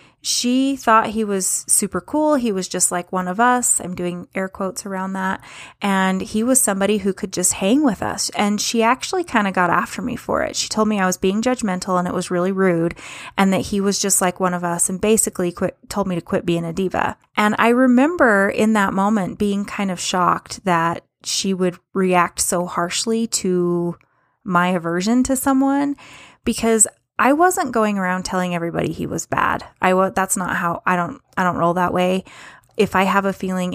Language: English